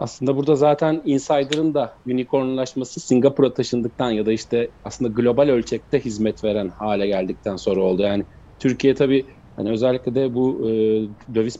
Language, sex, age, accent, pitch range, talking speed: Turkish, male, 40-59, native, 105-135 Hz, 145 wpm